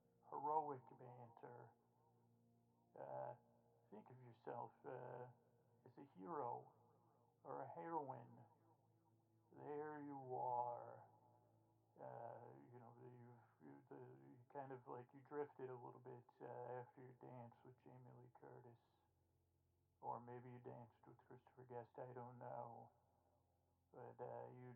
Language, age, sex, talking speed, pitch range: English, 40-59, male, 125 wpm, 120-130 Hz